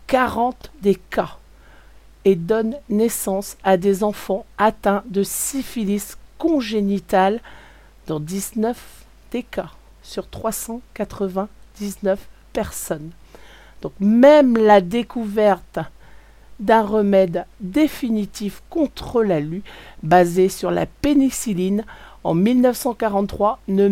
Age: 50-69